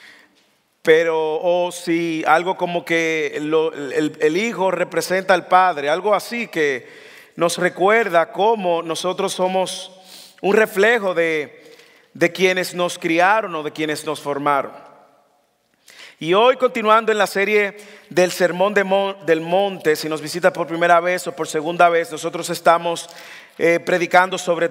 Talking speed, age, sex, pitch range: 150 wpm, 40-59, male, 155-195 Hz